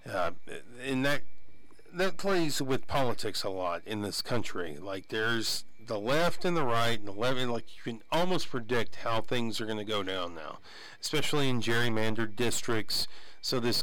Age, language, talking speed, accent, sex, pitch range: 40-59, English, 175 wpm, American, male, 115-145 Hz